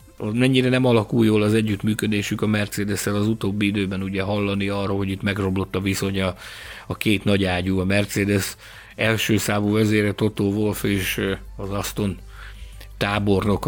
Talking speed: 150 wpm